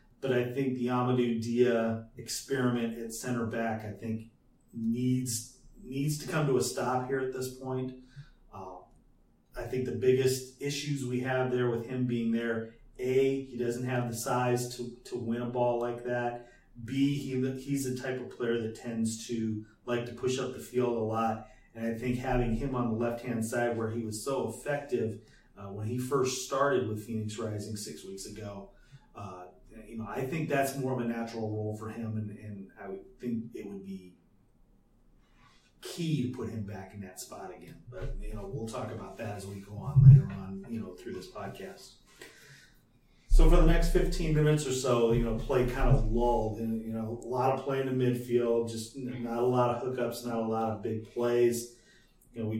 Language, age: English, 40-59